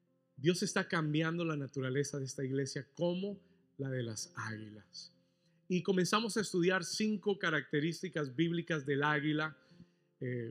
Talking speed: 130 wpm